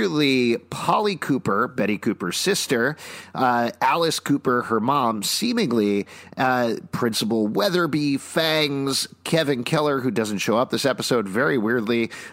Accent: American